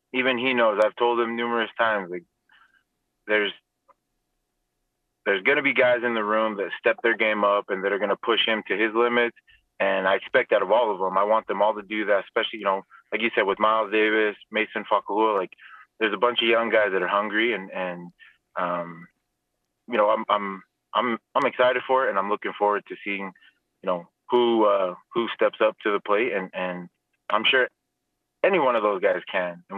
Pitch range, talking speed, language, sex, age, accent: 90-110 Hz, 220 wpm, English, male, 20-39, American